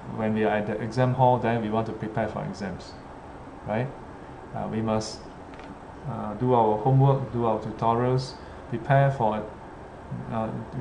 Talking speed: 155 wpm